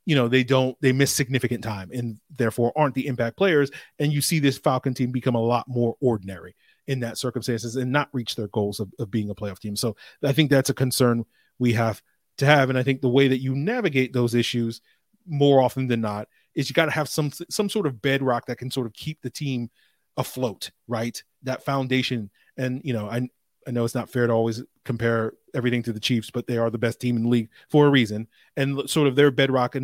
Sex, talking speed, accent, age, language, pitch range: male, 235 wpm, American, 30-49, English, 115-135 Hz